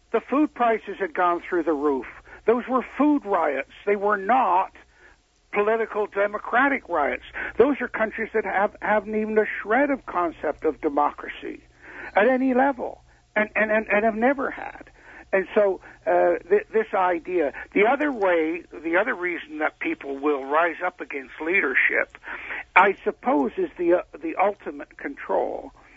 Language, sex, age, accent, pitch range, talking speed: English, male, 60-79, American, 160-220 Hz, 155 wpm